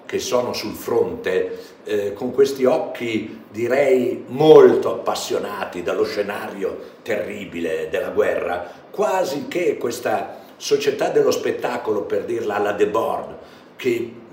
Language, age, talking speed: Italian, 60-79, 115 wpm